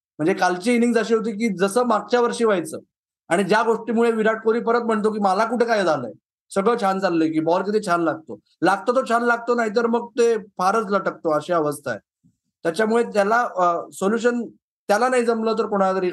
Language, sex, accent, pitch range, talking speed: Marathi, male, native, 180-235 Hz, 185 wpm